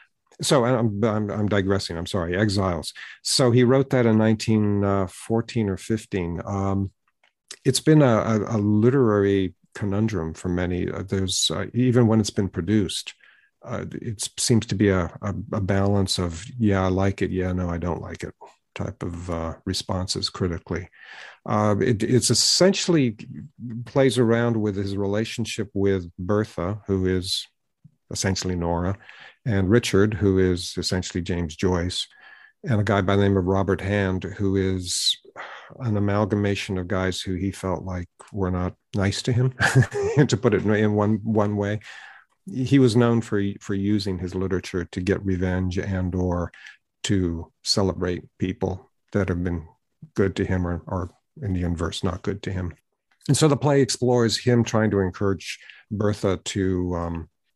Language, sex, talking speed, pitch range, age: English, male, 160 wpm, 95-110 Hz, 50-69